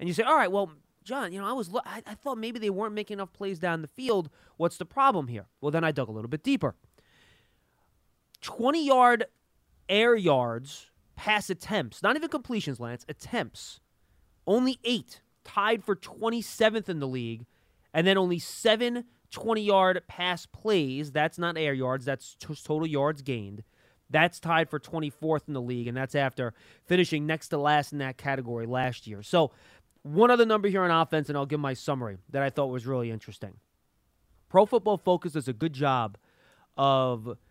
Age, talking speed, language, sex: 30-49, 185 wpm, English, male